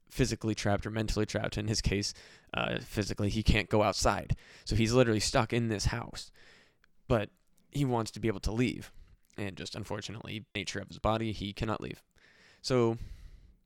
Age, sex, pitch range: 20-39, male, 100-120 Hz